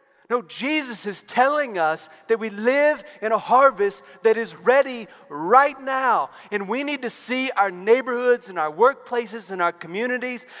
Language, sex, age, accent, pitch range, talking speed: English, male, 40-59, American, 170-255 Hz, 165 wpm